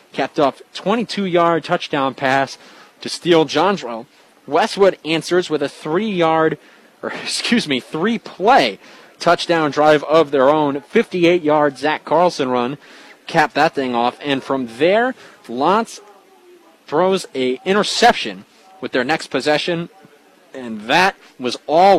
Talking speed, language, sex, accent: 125 wpm, English, male, American